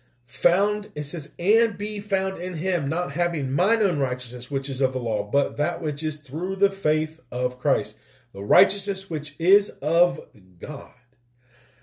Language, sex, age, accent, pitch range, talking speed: English, male, 40-59, American, 125-155 Hz, 165 wpm